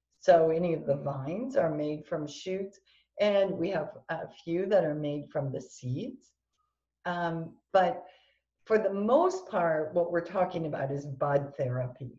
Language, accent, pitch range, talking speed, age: English, American, 150-190 Hz, 160 wpm, 50-69